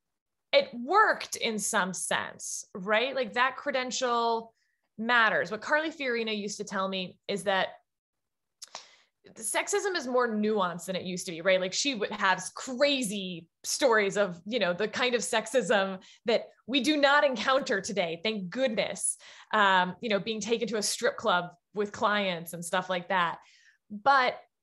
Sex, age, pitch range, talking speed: female, 20-39, 205-275 Hz, 165 wpm